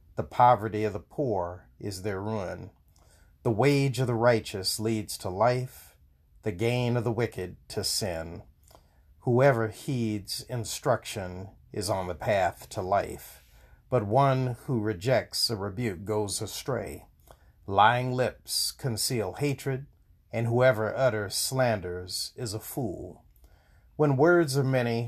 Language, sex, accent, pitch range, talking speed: English, male, American, 90-125 Hz, 130 wpm